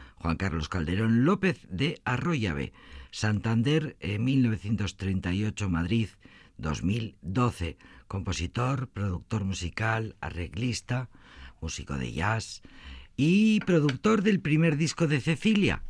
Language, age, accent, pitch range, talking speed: Spanish, 50-69, Spanish, 90-125 Hz, 90 wpm